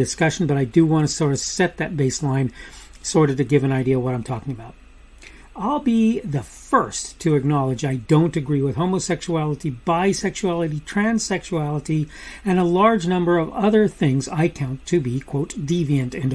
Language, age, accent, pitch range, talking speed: English, 40-59, American, 140-195 Hz, 180 wpm